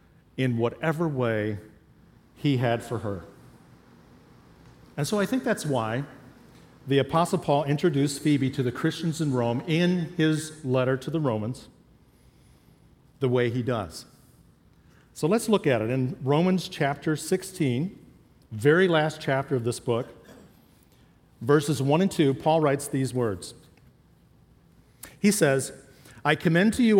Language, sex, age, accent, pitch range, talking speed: English, male, 50-69, American, 125-160 Hz, 140 wpm